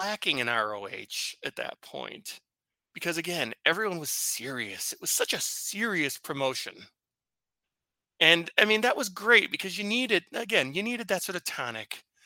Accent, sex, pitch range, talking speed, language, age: American, male, 140-210 Hz, 160 wpm, English, 30-49